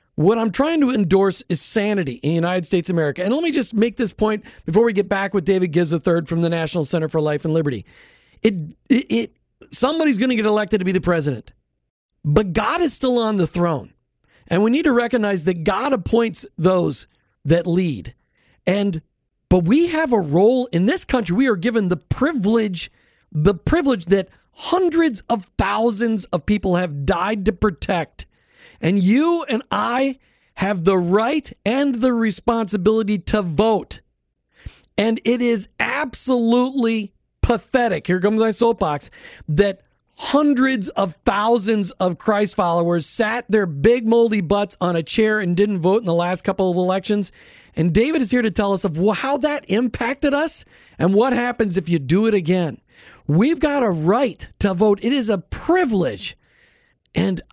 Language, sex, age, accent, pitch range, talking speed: English, male, 40-59, American, 180-235 Hz, 175 wpm